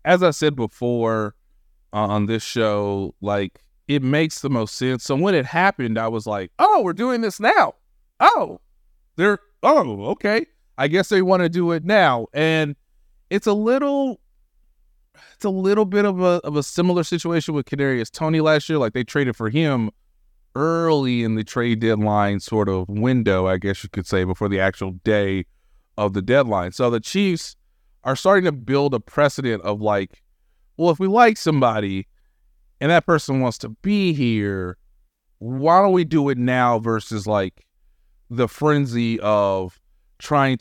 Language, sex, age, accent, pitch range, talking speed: English, male, 30-49, American, 105-155 Hz, 175 wpm